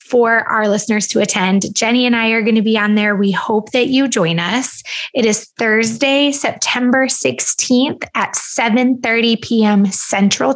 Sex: female